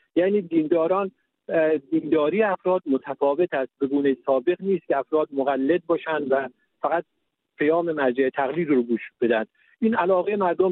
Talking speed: 135 wpm